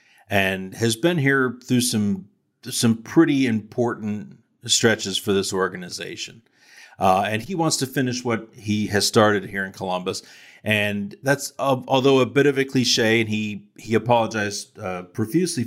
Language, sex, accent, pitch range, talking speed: English, male, American, 100-120 Hz, 155 wpm